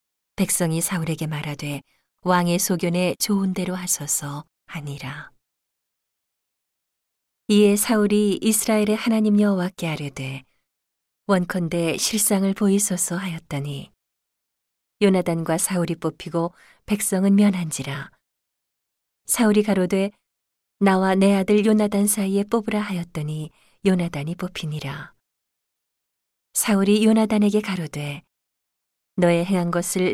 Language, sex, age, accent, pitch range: Korean, female, 40-59, native, 160-205 Hz